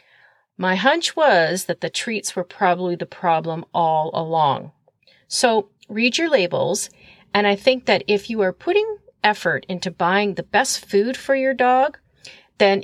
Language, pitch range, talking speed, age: English, 175-235 Hz, 160 wpm, 40-59